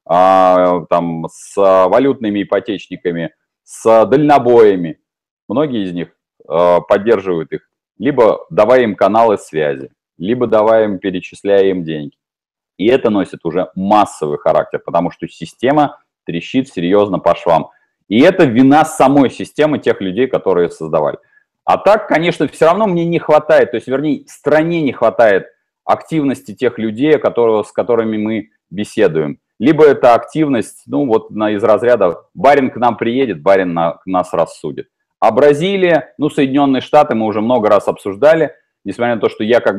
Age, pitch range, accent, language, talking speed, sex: 30-49, 100-145 Hz, native, Russian, 150 wpm, male